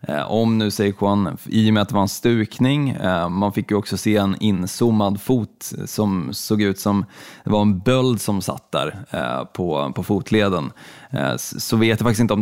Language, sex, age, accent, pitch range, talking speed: Swedish, male, 20-39, native, 100-115 Hz, 195 wpm